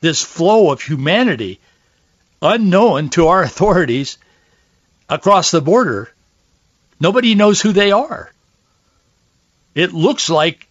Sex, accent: male, American